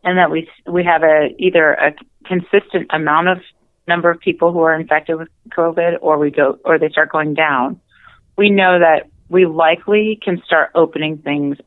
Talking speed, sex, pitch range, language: 185 wpm, female, 145-180 Hz, English